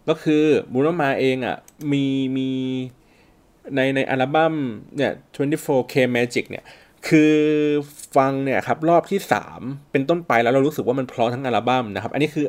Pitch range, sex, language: 115-150 Hz, male, Thai